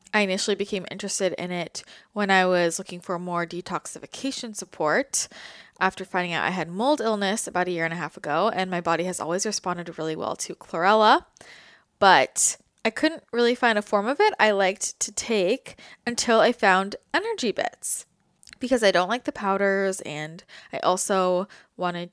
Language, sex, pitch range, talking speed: English, female, 180-225 Hz, 180 wpm